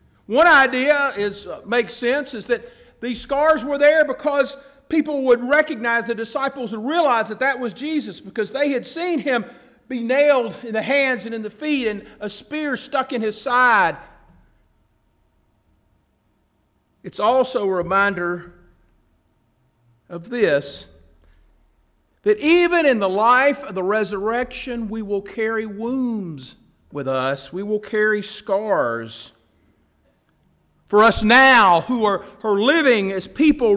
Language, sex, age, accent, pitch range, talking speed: English, male, 50-69, American, 195-275 Hz, 140 wpm